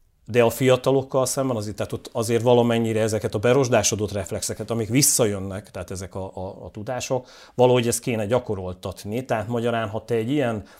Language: Hungarian